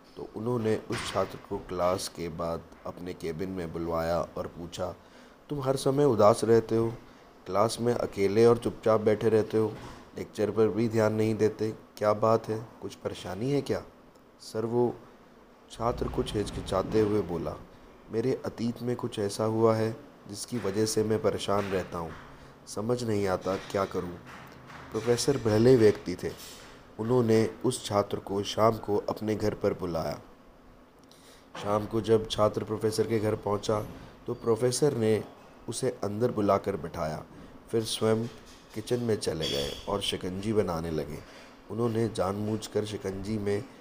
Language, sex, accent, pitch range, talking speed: Hindi, male, native, 95-115 Hz, 150 wpm